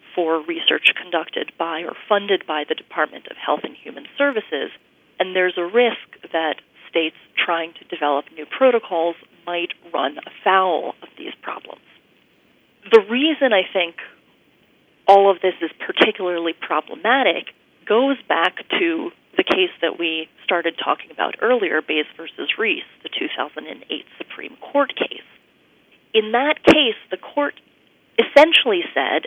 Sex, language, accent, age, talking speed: female, English, American, 30-49, 135 wpm